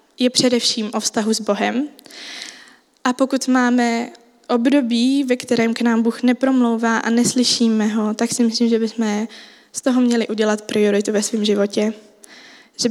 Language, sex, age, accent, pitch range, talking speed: Czech, female, 20-39, native, 225-250 Hz, 155 wpm